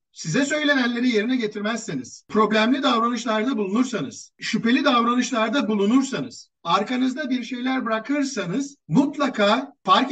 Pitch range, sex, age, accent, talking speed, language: 195-265 Hz, male, 50-69, native, 95 wpm, Turkish